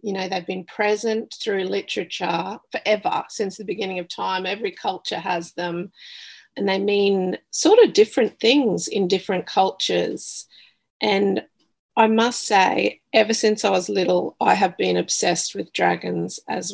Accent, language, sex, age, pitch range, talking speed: Australian, English, female, 40-59, 180-215 Hz, 155 wpm